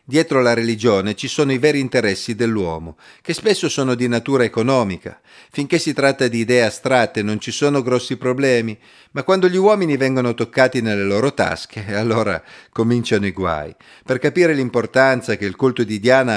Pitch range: 110-140 Hz